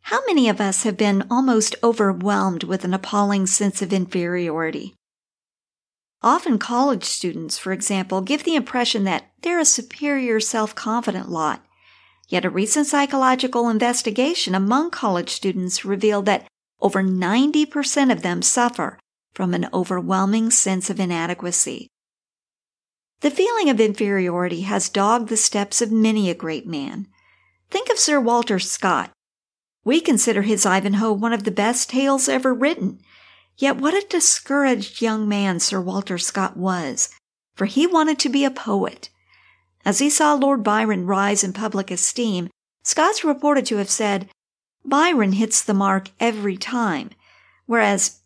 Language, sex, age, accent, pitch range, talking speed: English, female, 50-69, American, 195-265 Hz, 145 wpm